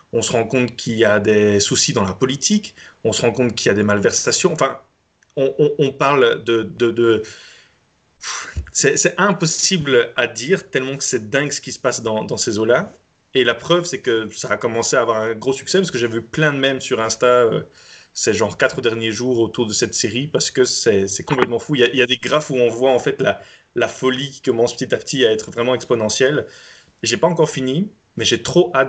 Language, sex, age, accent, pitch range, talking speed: French, male, 30-49, French, 115-150 Hz, 245 wpm